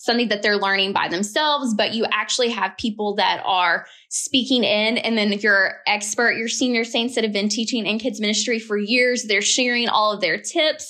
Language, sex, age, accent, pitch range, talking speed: English, female, 20-39, American, 205-245 Hz, 210 wpm